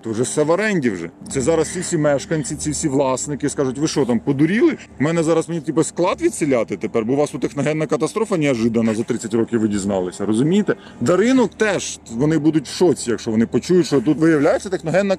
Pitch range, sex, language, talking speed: 135-180 Hz, male, Ukrainian, 210 wpm